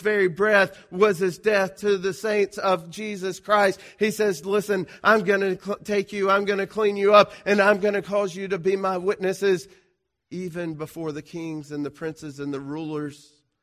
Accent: American